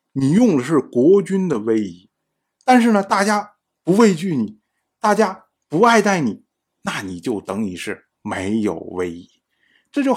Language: Chinese